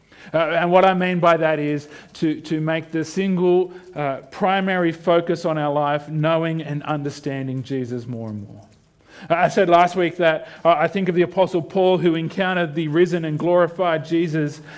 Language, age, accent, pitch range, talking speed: English, 40-59, Australian, 145-185 Hz, 185 wpm